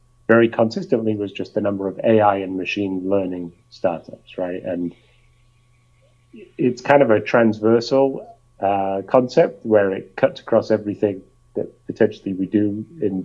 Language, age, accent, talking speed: English, 30-49, British, 140 wpm